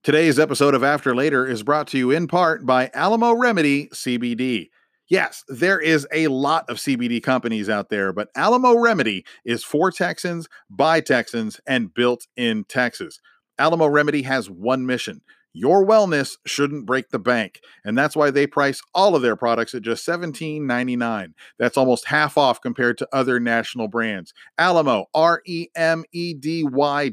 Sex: male